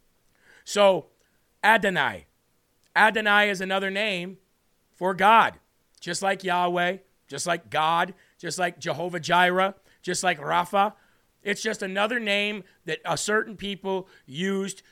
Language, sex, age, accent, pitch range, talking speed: English, male, 40-59, American, 165-195 Hz, 120 wpm